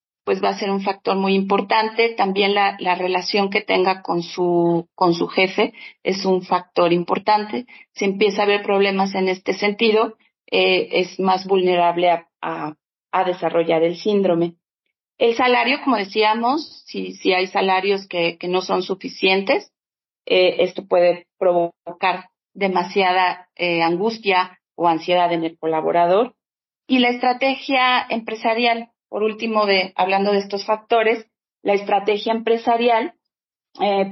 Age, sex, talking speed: 40-59, female, 140 wpm